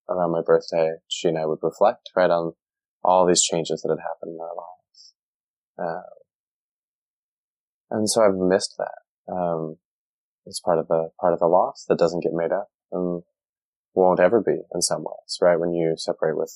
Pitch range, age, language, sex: 80-105 Hz, 20-39, English, male